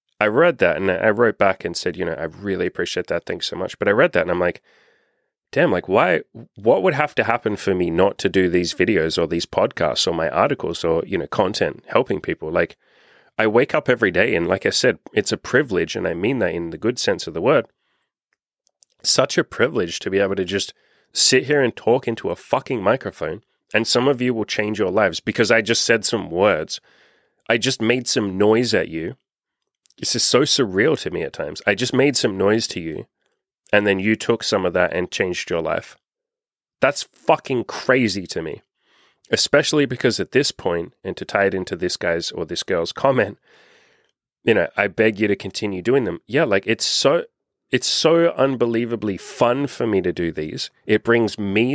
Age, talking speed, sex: 30-49, 215 wpm, male